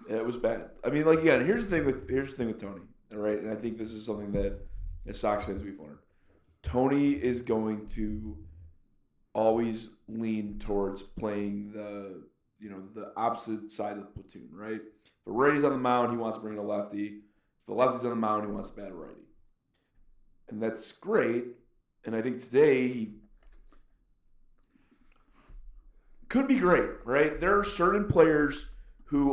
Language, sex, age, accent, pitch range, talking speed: English, male, 30-49, American, 105-130 Hz, 180 wpm